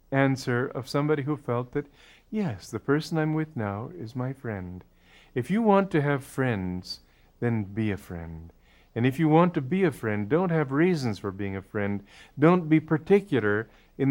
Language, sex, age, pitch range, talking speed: English, male, 50-69, 100-145 Hz, 185 wpm